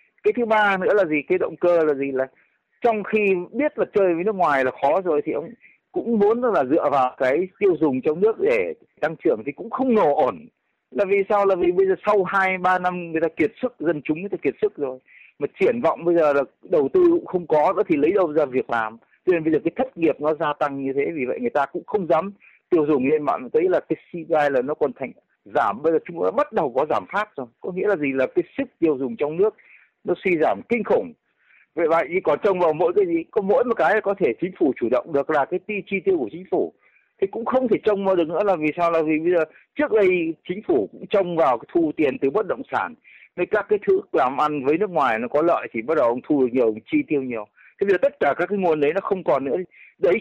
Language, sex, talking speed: Vietnamese, male, 280 wpm